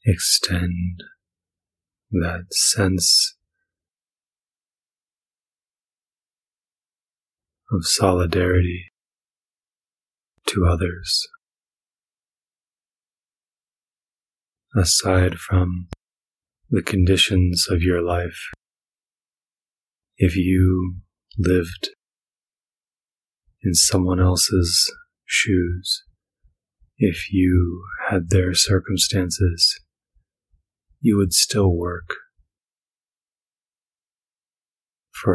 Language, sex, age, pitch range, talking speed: English, male, 30-49, 90-95 Hz, 55 wpm